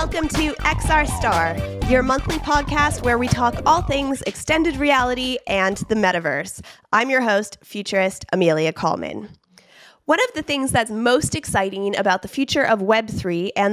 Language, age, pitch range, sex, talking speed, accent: English, 20-39, 200-270 Hz, female, 155 wpm, American